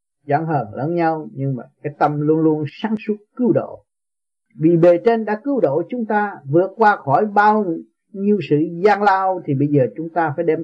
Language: Vietnamese